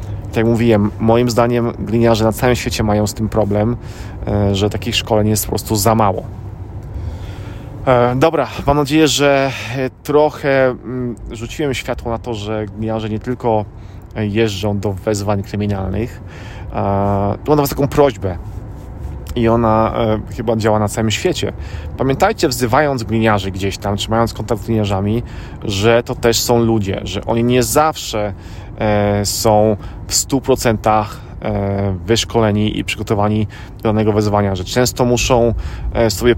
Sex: male